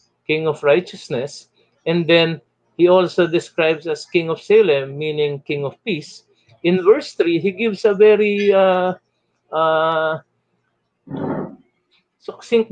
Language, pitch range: English, 165-230 Hz